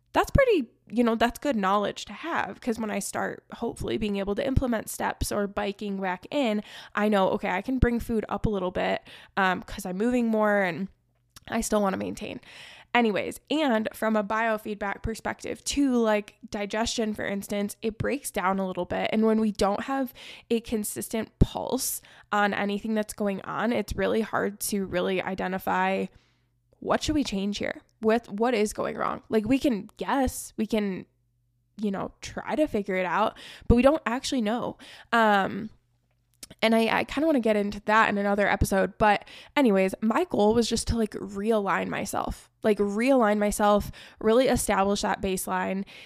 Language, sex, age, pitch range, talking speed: English, female, 10-29, 200-230 Hz, 180 wpm